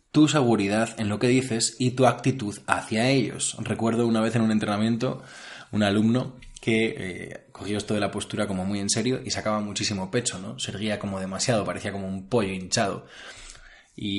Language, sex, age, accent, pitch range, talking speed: Spanish, male, 20-39, Spanish, 100-120 Hz, 190 wpm